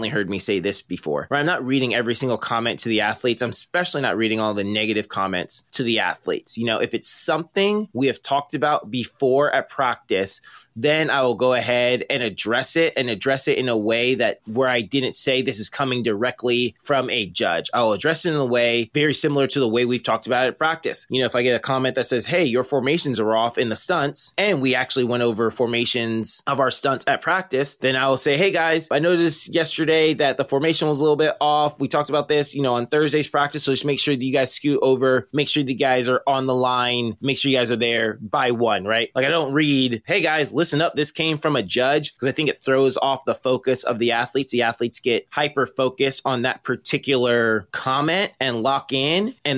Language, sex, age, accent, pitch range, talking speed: English, male, 20-39, American, 115-145 Hz, 240 wpm